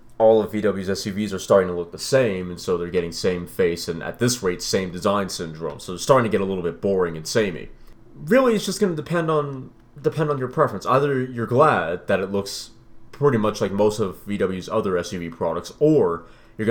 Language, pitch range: English, 100-165 Hz